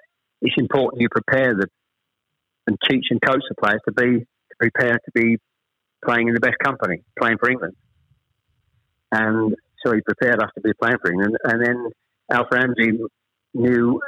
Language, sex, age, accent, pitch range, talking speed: English, male, 50-69, British, 110-120 Hz, 165 wpm